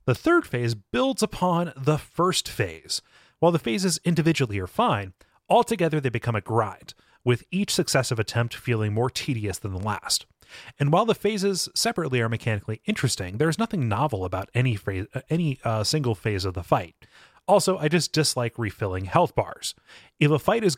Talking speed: 180 wpm